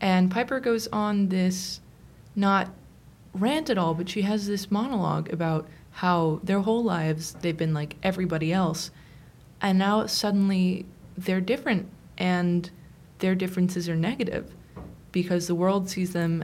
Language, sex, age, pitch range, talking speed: English, female, 20-39, 165-195 Hz, 140 wpm